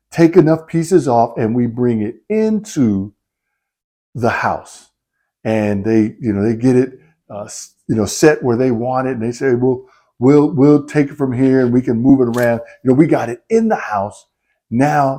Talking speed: 200 wpm